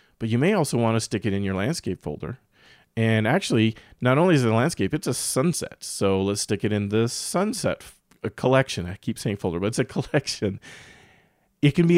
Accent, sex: American, male